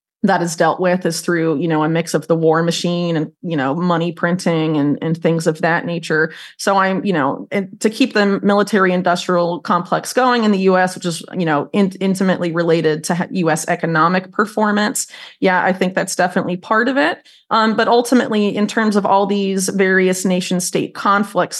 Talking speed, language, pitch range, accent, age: 195 wpm, English, 170-195 Hz, American, 30-49